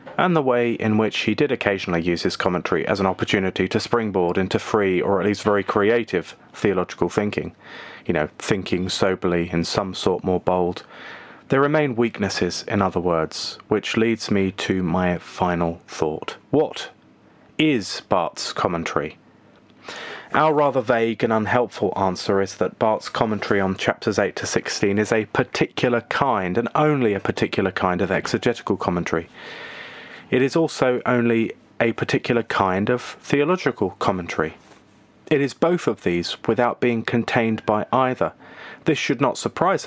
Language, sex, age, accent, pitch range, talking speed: English, male, 30-49, British, 95-125 Hz, 155 wpm